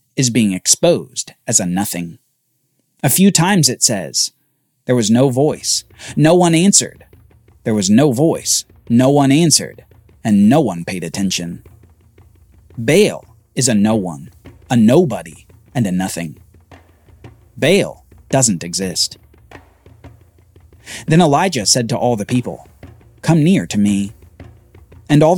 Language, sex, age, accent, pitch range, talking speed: English, male, 30-49, American, 95-140 Hz, 130 wpm